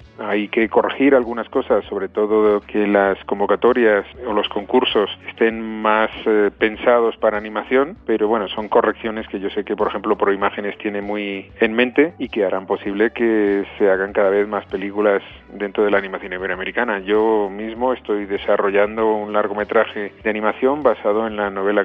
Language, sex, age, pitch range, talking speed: Spanish, male, 40-59, 105-120 Hz, 175 wpm